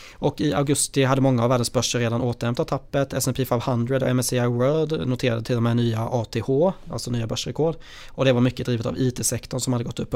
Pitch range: 120-130 Hz